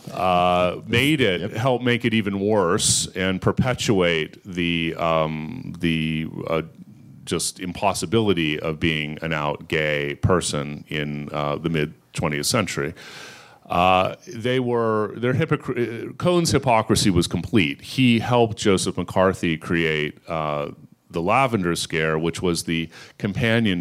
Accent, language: American, English